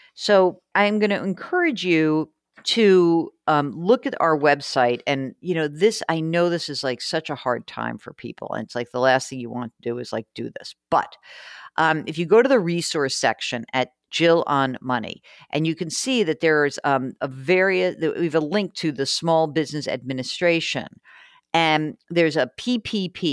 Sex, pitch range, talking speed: female, 140-175 Hz, 195 wpm